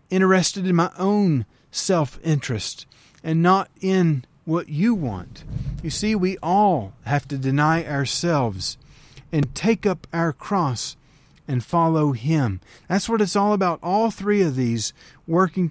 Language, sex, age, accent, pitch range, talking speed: English, male, 40-59, American, 140-180 Hz, 140 wpm